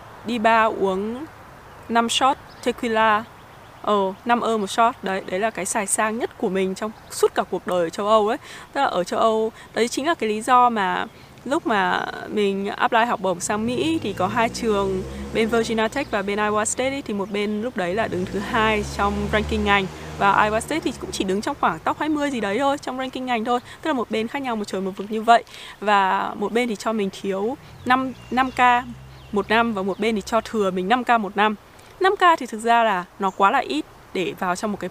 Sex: female